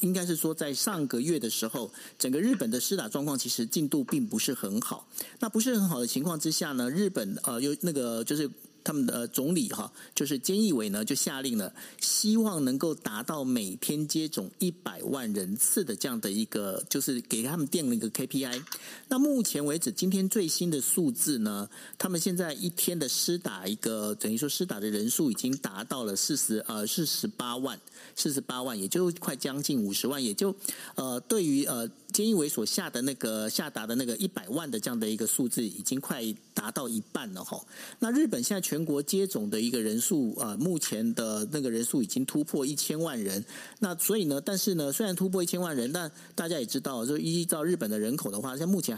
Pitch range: 135-220 Hz